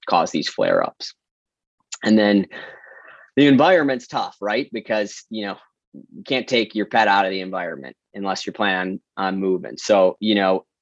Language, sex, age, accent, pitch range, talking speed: English, male, 20-39, American, 90-110 Hz, 170 wpm